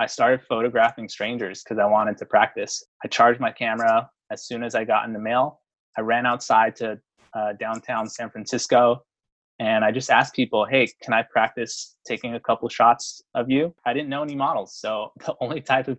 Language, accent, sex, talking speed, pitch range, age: English, American, male, 205 wpm, 115-130 Hz, 20-39